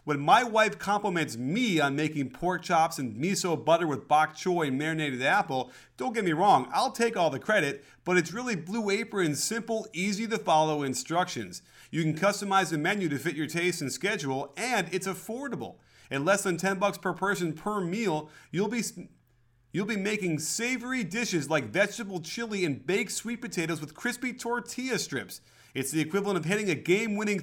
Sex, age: male, 30-49